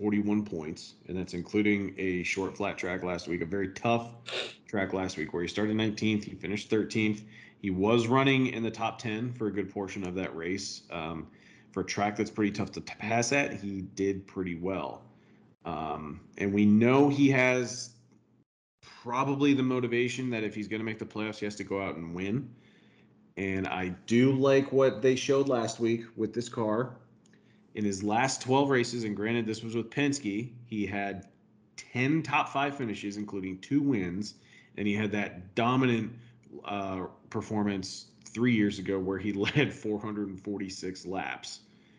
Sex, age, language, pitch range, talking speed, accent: male, 40-59, English, 100-125 Hz, 175 wpm, American